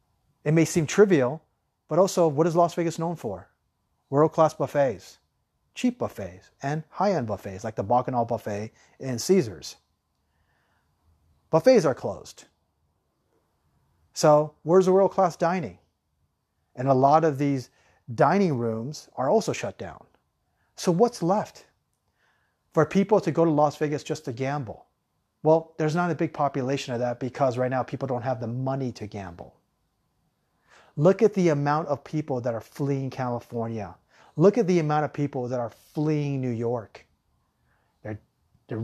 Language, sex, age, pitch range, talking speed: English, male, 30-49, 120-160 Hz, 150 wpm